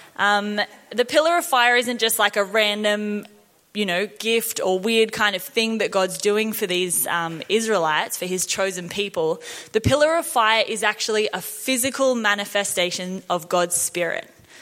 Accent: Australian